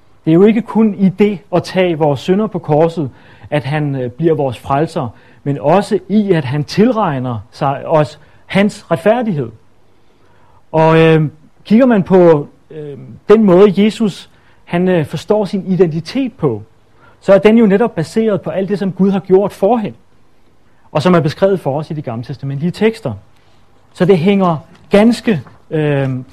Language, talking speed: Danish, 165 wpm